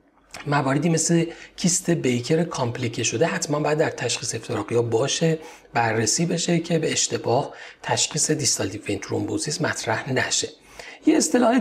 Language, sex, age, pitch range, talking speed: Persian, male, 40-59, 120-170 Hz, 130 wpm